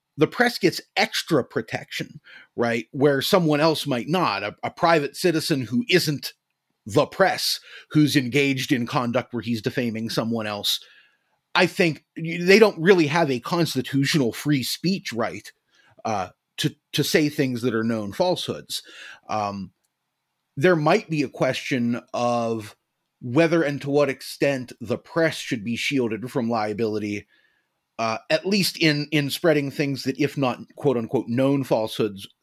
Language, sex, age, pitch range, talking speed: English, male, 30-49, 115-155 Hz, 150 wpm